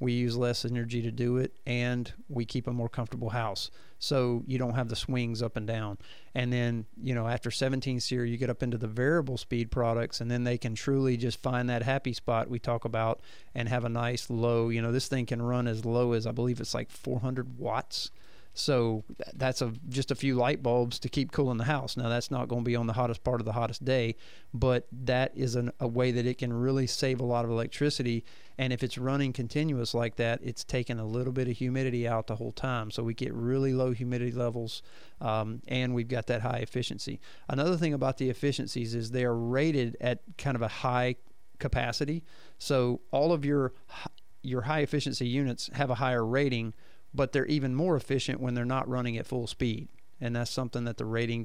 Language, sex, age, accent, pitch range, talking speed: English, male, 40-59, American, 115-130 Hz, 220 wpm